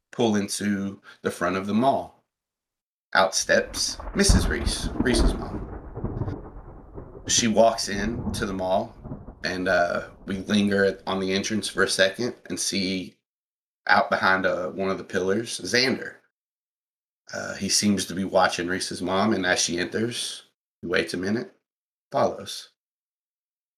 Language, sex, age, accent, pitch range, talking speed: English, male, 30-49, American, 95-120 Hz, 140 wpm